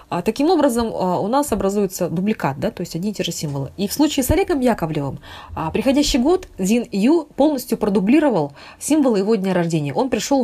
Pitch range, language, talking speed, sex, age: 175-255 Hz, Russian, 185 wpm, female, 20-39